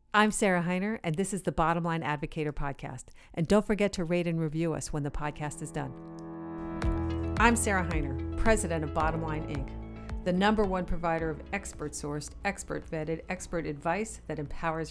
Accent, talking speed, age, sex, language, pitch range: American, 175 wpm, 50-69, female, English, 150-180 Hz